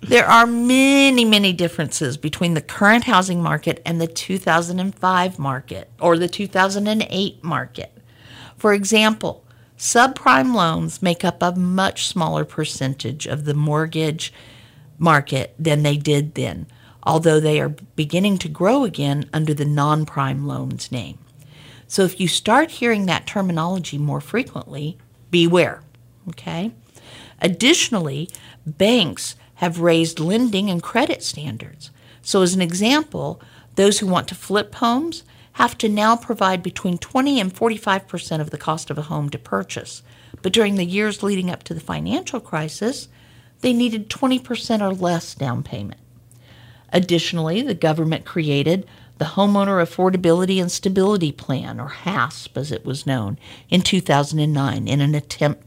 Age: 50-69